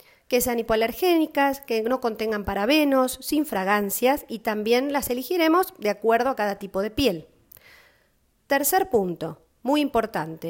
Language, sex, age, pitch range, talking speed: Spanish, female, 40-59, 225-295 Hz, 135 wpm